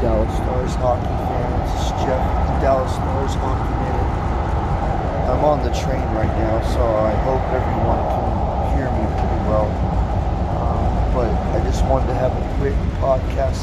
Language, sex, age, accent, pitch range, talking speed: English, male, 40-59, American, 85-115 Hz, 155 wpm